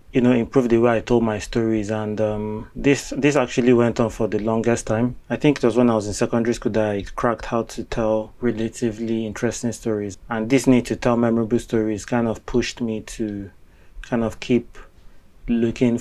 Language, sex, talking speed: English, male, 205 wpm